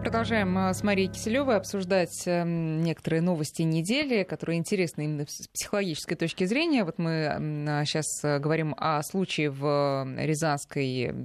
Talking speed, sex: 125 wpm, female